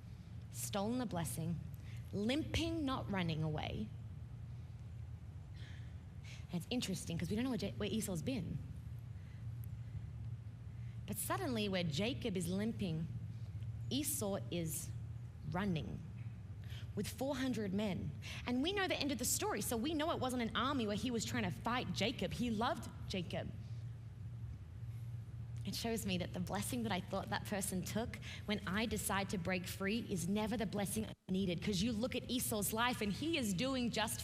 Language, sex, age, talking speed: English, female, 20-39, 155 wpm